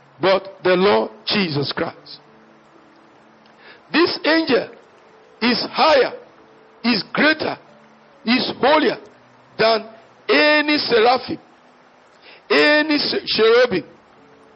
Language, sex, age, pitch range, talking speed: English, male, 50-69, 225-295 Hz, 75 wpm